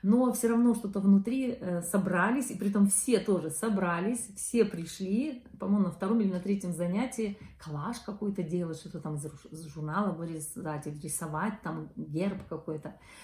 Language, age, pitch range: Russian, 40-59, 175-210 Hz